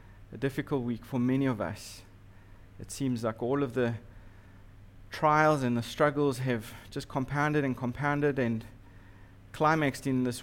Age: 30-49